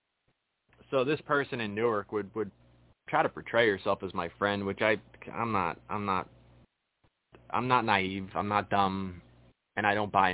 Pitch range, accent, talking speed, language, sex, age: 95-115 Hz, American, 175 wpm, English, male, 20-39